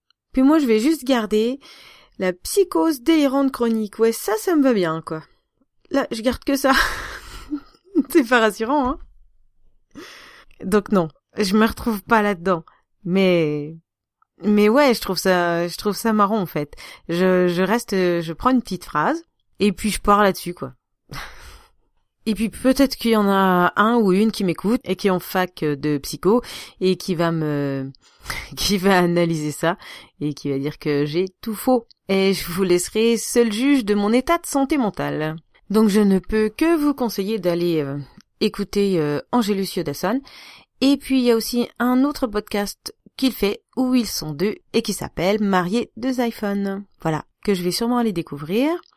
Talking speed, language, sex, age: 180 wpm, French, female, 30-49